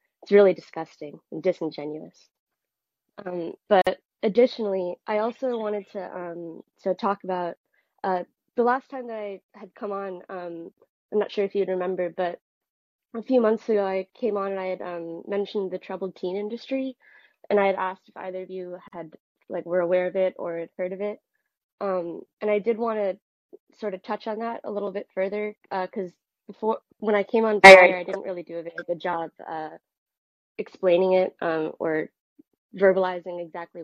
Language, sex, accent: English, female, American